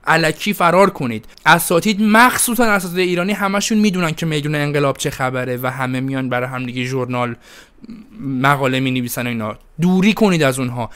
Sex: male